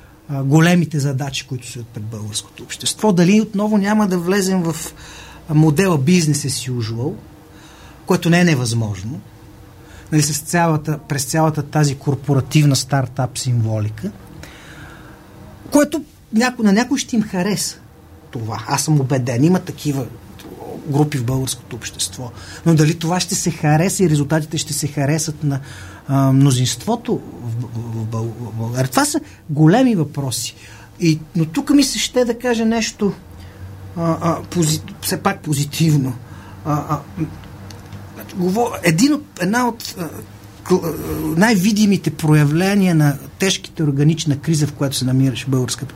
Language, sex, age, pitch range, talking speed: Bulgarian, male, 30-49, 125-180 Hz, 130 wpm